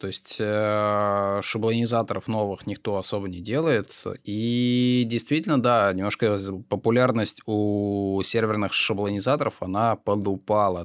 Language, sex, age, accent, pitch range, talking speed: Russian, male, 20-39, native, 95-115 Hz, 110 wpm